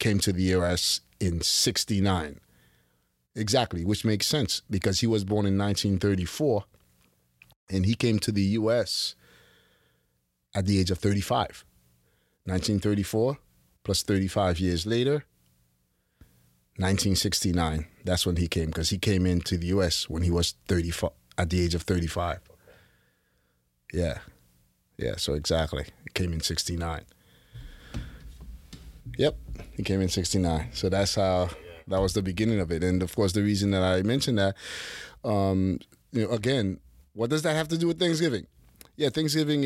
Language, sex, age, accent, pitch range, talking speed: English, male, 30-49, American, 80-105 Hz, 145 wpm